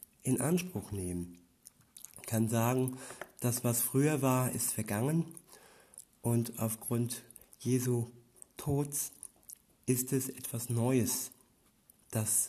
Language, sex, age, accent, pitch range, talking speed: German, male, 50-69, German, 115-130 Hz, 100 wpm